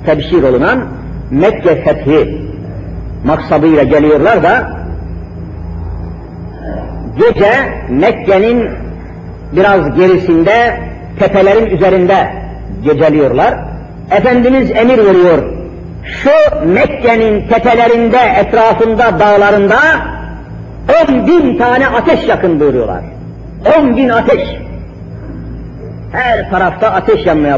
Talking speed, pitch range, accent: 75 wpm, 205-270 Hz, native